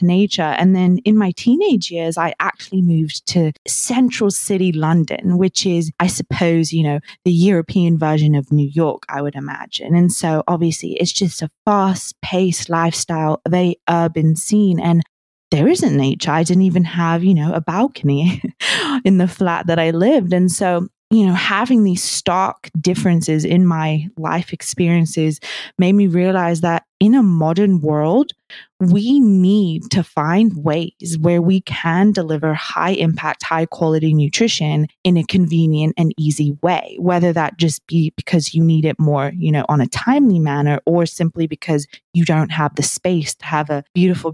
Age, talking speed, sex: 20-39, 170 wpm, female